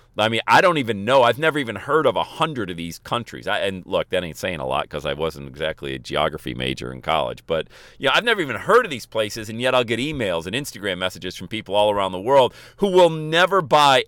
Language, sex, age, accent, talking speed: English, male, 40-59, American, 255 wpm